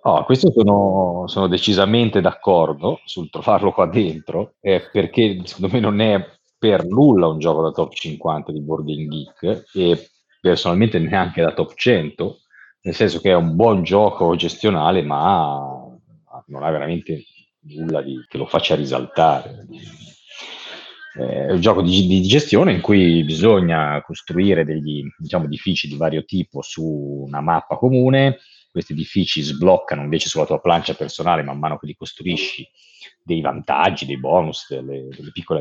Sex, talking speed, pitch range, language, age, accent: male, 150 wpm, 75-100 Hz, Italian, 40-59, native